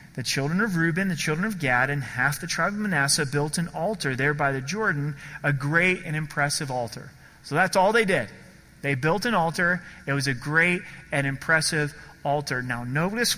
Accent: American